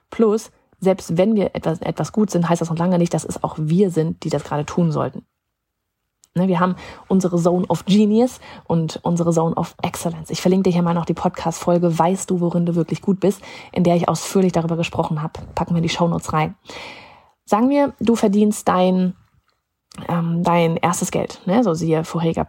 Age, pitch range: 30-49, 170-200 Hz